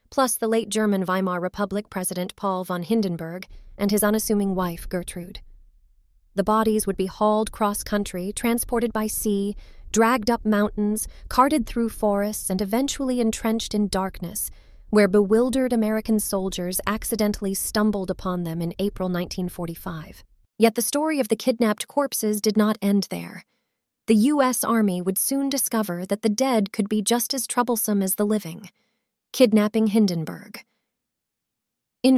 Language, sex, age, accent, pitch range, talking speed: English, female, 30-49, American, 190-230 Hz, 145 wpm